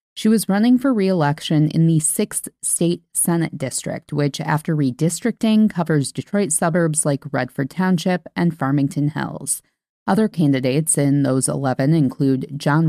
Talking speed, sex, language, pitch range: 140 wpm, female, English, 145-185 Hz